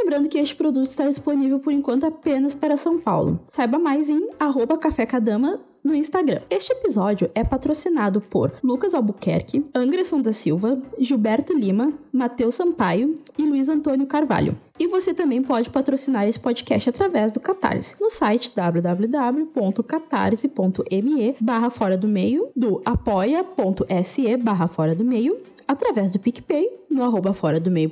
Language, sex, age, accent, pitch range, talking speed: Portuguese, female, 10-29, Brazilian, 240-315 Hz, 130 wpm